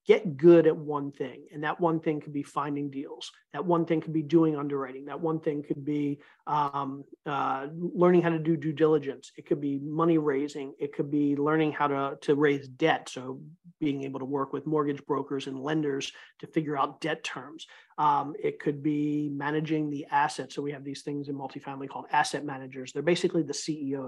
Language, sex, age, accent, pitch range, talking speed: English, male, 40-59, American, 145-165 Hz, 205 wpm